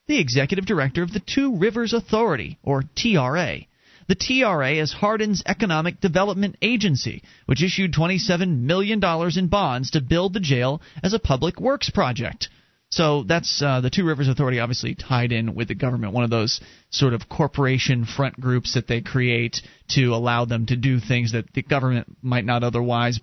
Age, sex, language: 30-49, male, English